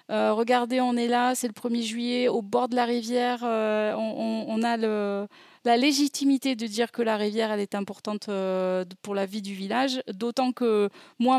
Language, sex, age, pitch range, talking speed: French, female, 30-49, 205-245 Hz, 210 wpm